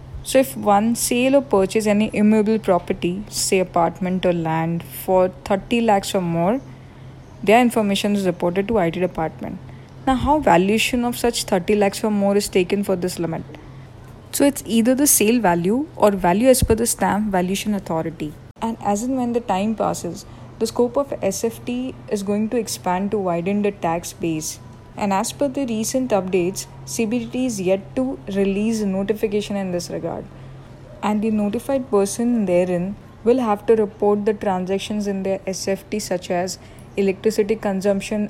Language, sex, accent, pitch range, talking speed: English, female, Indian, 180-215 Hz, 165 wpm